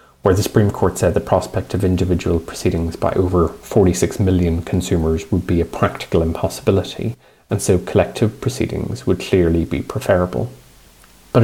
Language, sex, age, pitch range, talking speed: English, male, 30-49, 85-110 Hz, 150 wpm